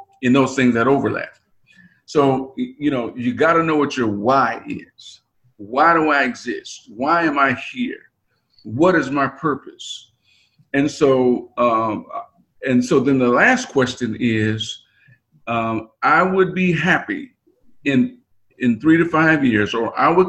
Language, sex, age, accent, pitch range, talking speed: English, male, 50-69, American, 115-160 Hz, 150 wpm